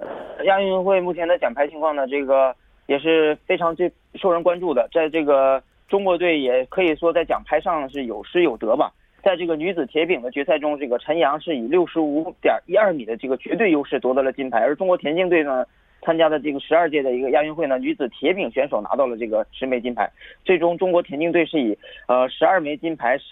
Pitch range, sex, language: 135-175 Hz, male, Korean